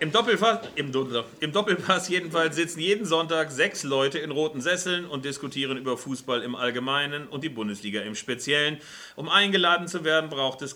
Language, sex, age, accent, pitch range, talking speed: German, male, 40-59, German, 125-155 Hz, 160 wpm